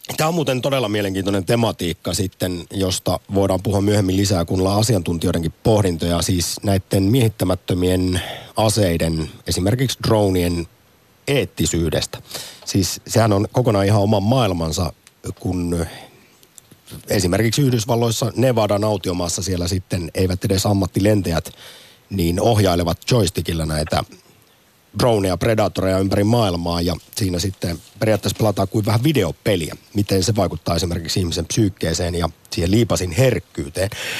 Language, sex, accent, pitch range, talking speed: Finnish, male, native, 90-115 Hz, 115 wpm